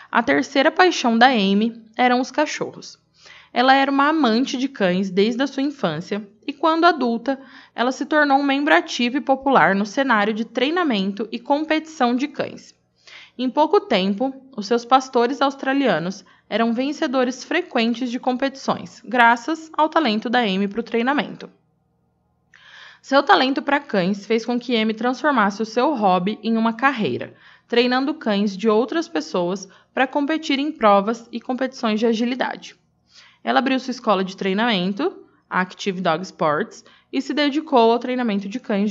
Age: 20-39